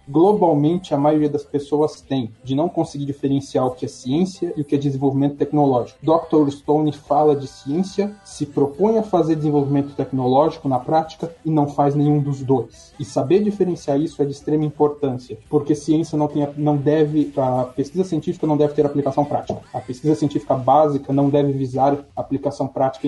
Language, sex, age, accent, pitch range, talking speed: Portuguese, male, 20-39, Brazilian, 135-155 Hz, 180 wpm